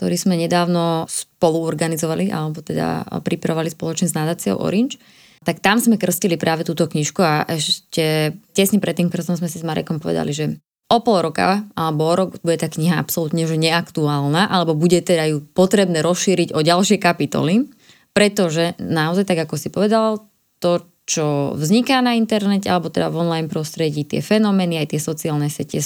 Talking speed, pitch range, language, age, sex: 165 wpm, 160-190 Hz, Slovak, 20-39, female